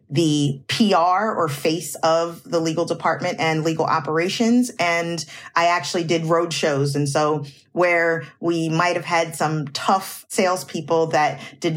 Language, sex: English, female